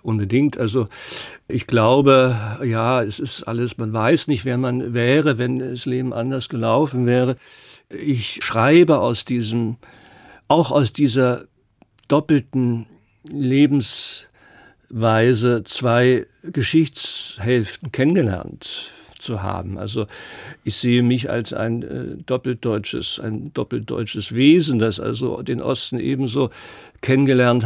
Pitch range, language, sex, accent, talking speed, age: 115-140 Hz, German, male, German, 110 wpm, 60-79